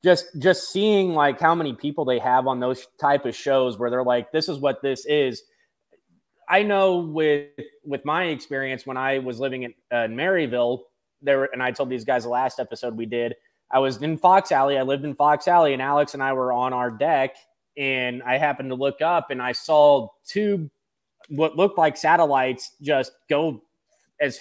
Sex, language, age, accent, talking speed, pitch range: male, English, 20-39, American, 200 wpm, 130-160 Hz